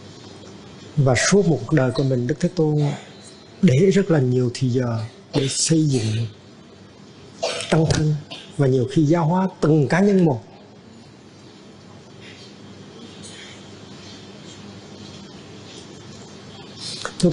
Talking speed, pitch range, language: 105 wpm, 120-150 Hz, Vietnamese